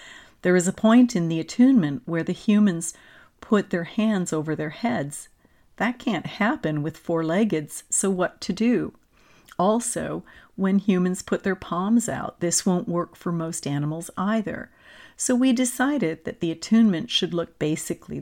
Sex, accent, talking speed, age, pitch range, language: female, American, 160 wpm, 50-69, 165-210 Hz, English